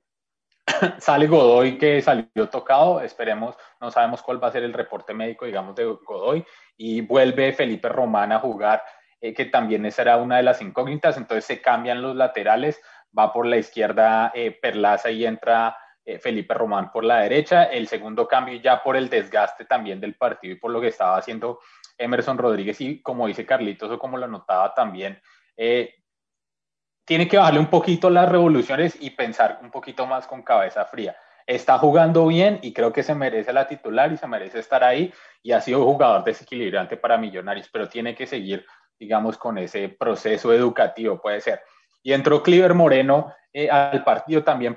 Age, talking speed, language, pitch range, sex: 20-39, 180 wpm, Spanish, 115-155 Hz, male